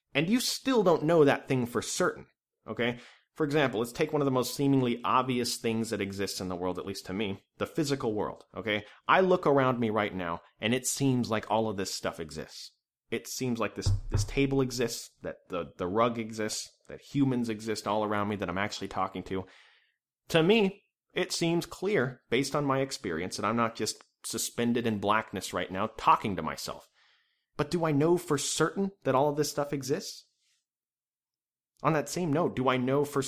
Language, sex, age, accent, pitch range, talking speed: English, male, 30-49, American, 110-140 Hz, 205 wpm